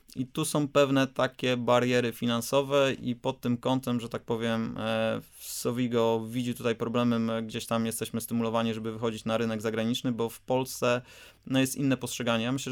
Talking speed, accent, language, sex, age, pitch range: 175 wpm, native, Polish, male, 20-39, 115-130 Hz